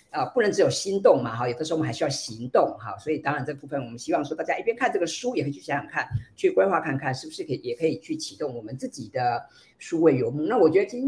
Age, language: 50-69, Chinese